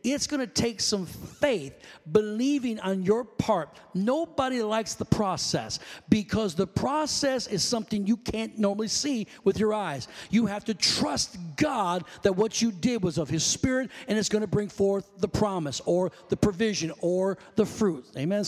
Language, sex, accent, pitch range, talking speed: English, male, American, 195-245 Hz, 170 wpm